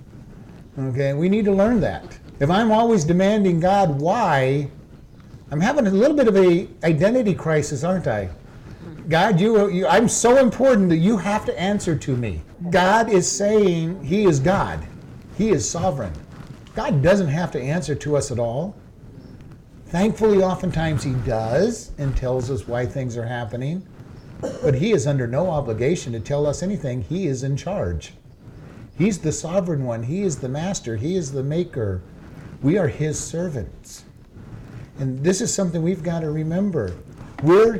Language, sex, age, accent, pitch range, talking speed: English, male, 50-69, American, 135-190 Hz, 165 wpm